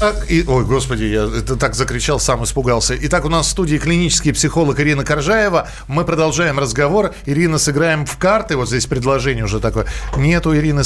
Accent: native